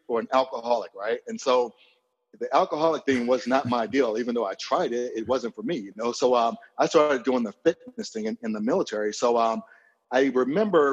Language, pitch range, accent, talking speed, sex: English, 120-165 Hz, American, 220 wpm, male